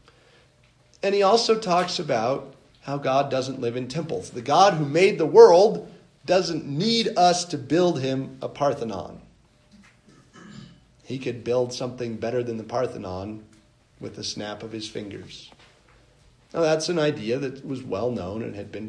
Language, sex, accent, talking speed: English, male, American, 160 wpm